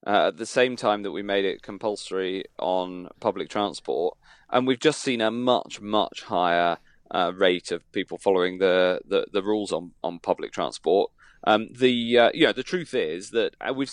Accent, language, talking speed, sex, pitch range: British, English, 195 wpm, male, 105-125 Hz